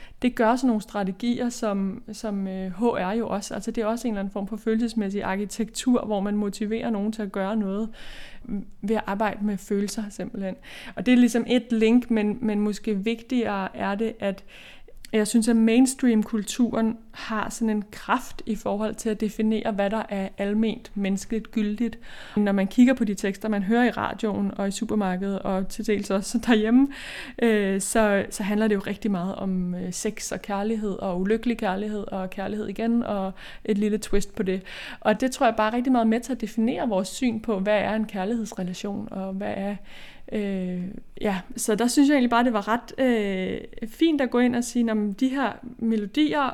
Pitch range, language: 200-235 Hz, Danish